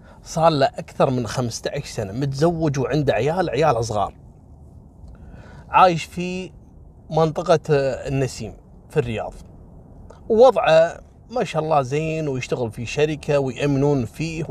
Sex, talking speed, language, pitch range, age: male, 110 wpm, Arabic, 115-180 Hz, 30-49